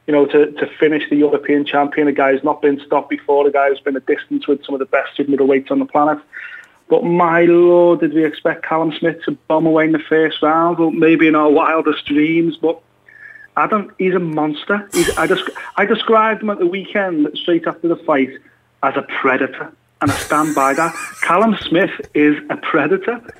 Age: 30-49